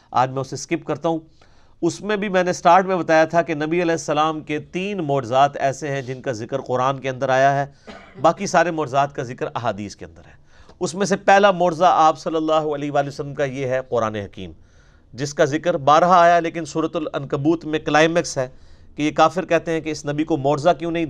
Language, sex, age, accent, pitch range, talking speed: English, male, 40-59, Indian, 135-170 Hz, 190 wpm